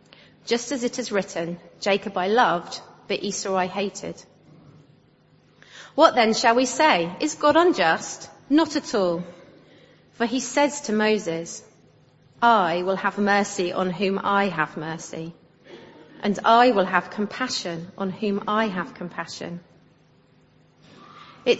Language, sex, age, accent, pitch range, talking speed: English, female, 30-49, British, 180-235 Hz, 135 wpm